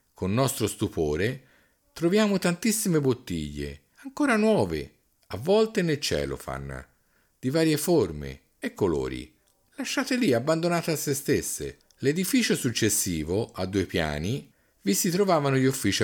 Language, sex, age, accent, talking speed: Italian, male, 50-69, native, 125 wpm